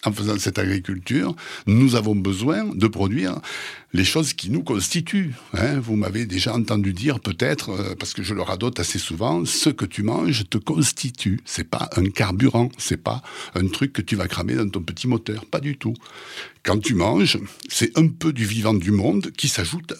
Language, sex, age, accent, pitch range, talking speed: French, male, 60-79, French, 100-145 Hz, 200 wpm